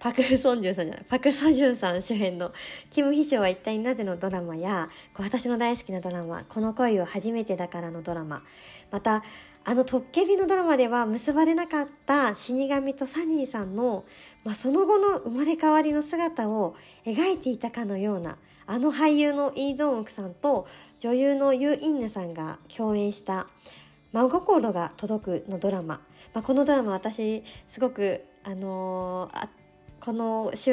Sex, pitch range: male, 195-275 Hz